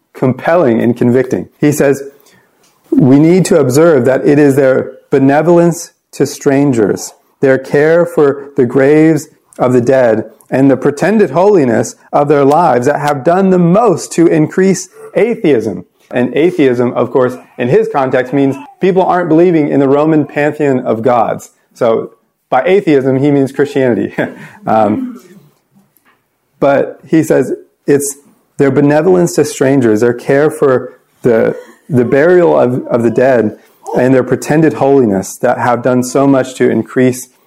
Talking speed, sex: 145 wpm, male